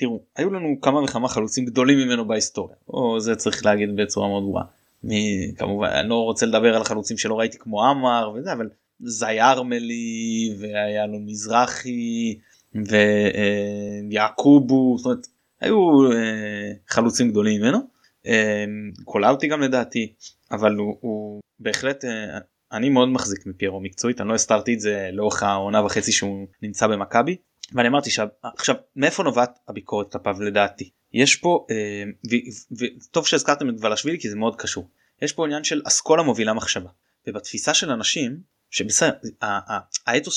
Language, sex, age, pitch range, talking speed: Hebrew, male, 20-39, 105-130 Hz, 145 wpm